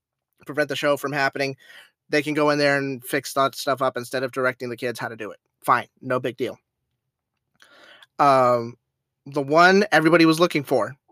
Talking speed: 190 wpm